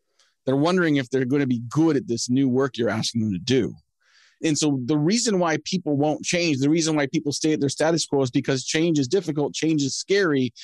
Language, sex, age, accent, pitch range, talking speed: English, male, 30-49, American, 130-165 Hz, 235 wpm